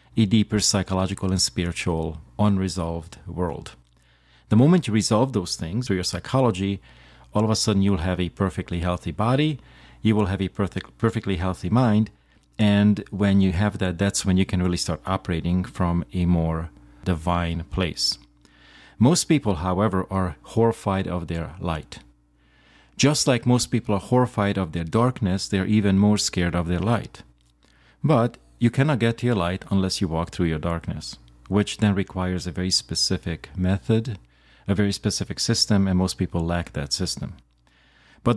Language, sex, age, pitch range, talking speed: English, male, 40-59, 85-110 Hz, 165 wpm